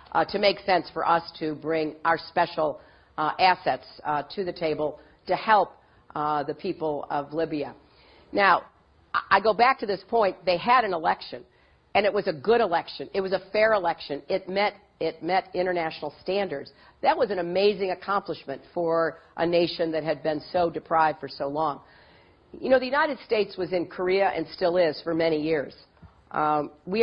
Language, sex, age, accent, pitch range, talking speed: English, female, 50-69, American, 160-190 Hz, 185 wpm